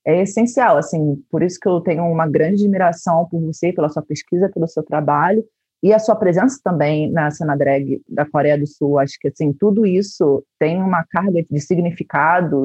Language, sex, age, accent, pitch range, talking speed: Portuguese, female, 30-49, Brazilian, 150-200 Hz, 190 wpm